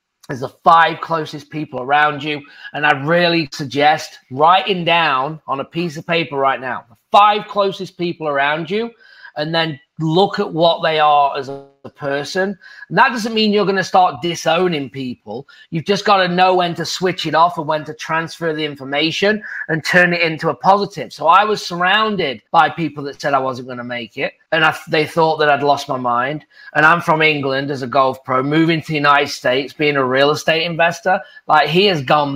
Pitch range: 150-185 Hz